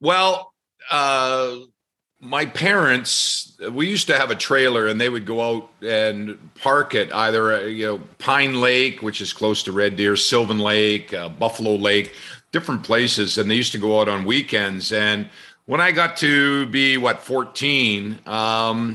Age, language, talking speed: 50-69, English, 170 wpm